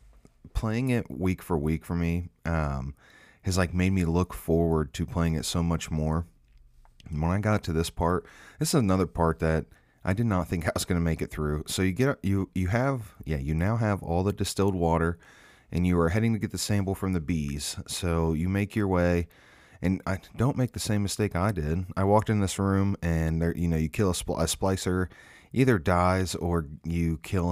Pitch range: 80-95 Hz